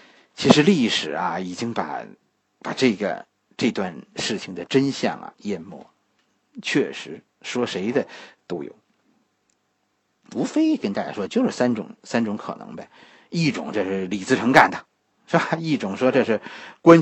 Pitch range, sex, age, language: 160-265 Hz, male, 50-69, Chinese